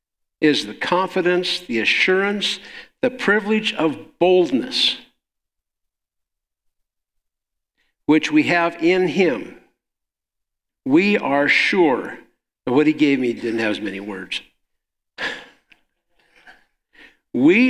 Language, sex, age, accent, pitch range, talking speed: English, male, 60-79, American, 155-205 Hz, 100 wpm